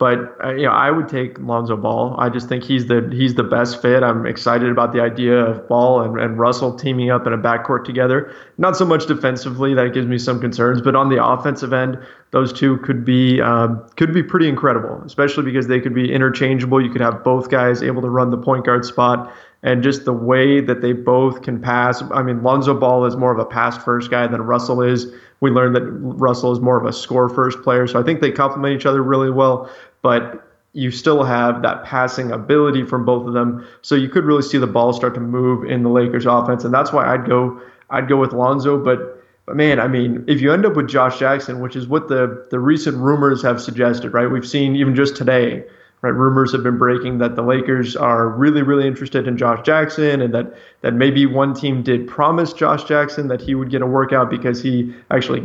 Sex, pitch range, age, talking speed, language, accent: male, 125-135 Hz, 20-39, 225 wpm, English, American